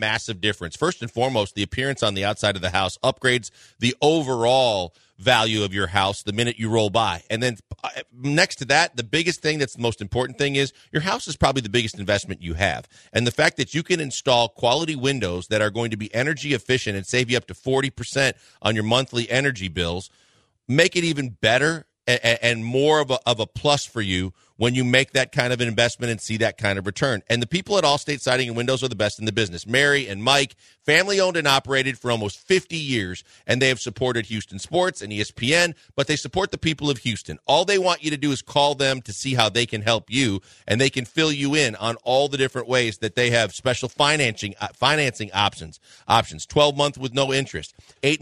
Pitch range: 110-140 Hz